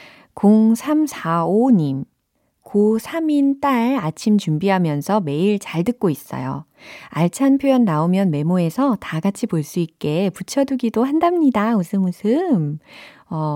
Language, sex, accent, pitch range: Korean, female, native, 160-235 Hz